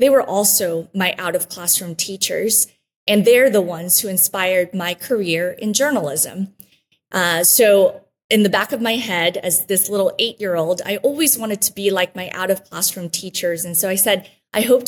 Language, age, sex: English, 30-49, female